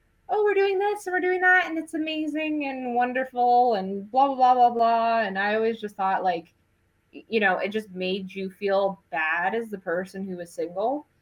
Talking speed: 210 wpm